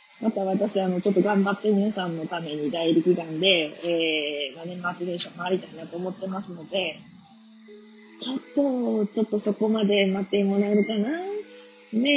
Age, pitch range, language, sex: 20-39, 180-245 Hz, Japanese, female